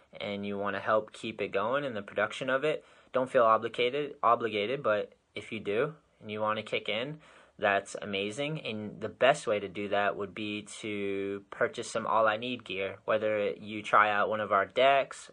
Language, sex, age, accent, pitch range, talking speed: English, male, 20-39, American, 105-125 Hz, 210 wpm